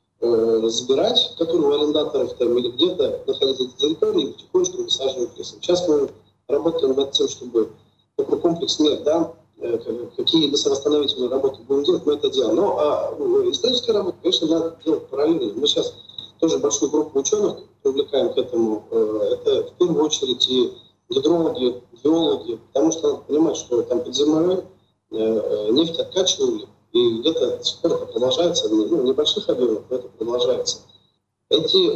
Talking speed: 145 wpm